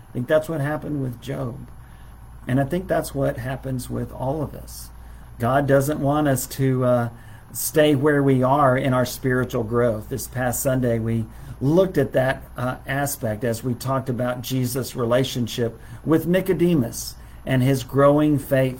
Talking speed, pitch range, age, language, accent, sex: 165 wpm, 115-135 Hz, 50-69, English, American, male